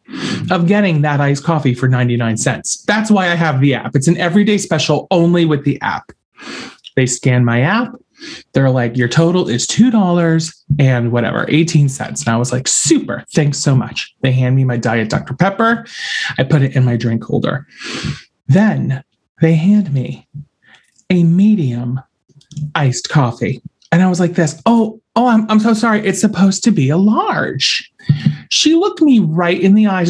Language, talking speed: English, 180 wpm